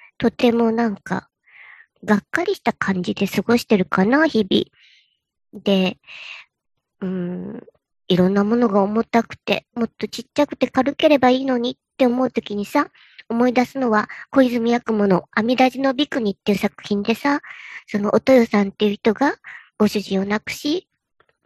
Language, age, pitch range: Japanese, 40-59, 210-275 Hz